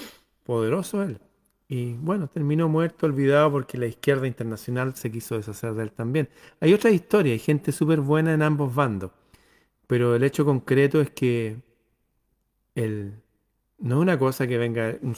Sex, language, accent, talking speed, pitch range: male, Spanish, Argentinian, 160 wpm, 110-135 Hz